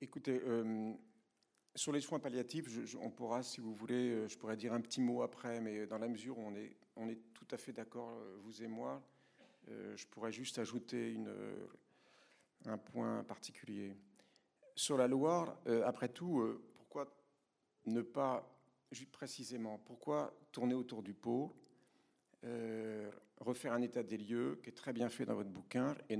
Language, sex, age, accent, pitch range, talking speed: French, male, 50-69, French, 110-130 Hz, 175 wpm